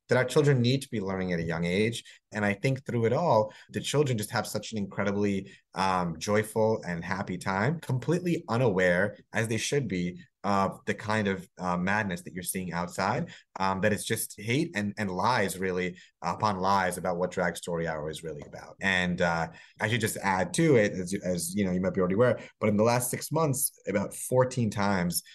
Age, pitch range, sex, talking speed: 30-49, 90-110 Hz, male, 210 wpm